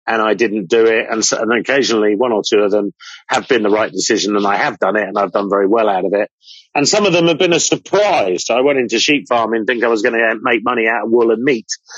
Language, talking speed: English, 285 wpm